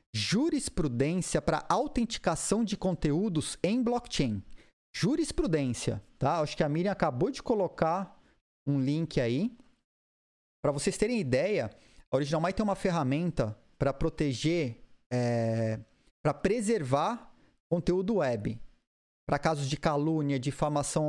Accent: Brazilian